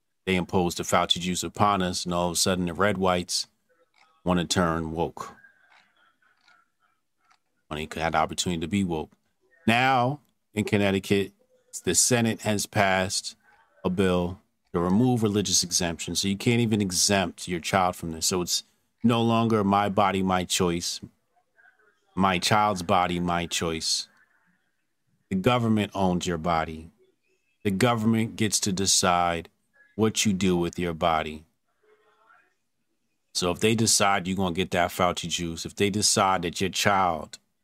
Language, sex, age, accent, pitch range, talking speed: English, male, 40-59, American, 90-115 Hz, 155 wpm